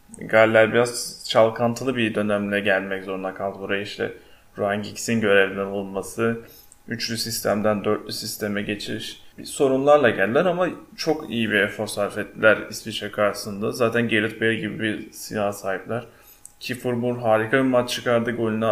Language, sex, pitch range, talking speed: Turkish, male, 105-130 Hz, 140 wpm